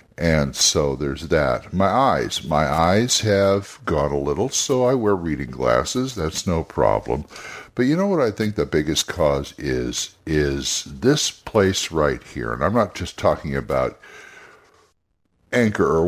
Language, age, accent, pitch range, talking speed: English, 60-79, American, 75-115 Hz, 160 wpm